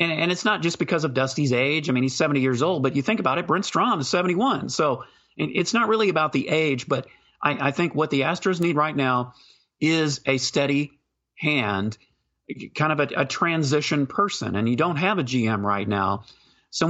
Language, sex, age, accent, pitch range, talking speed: English, male, 40-59, American, 125-160 Hz, 215 wpm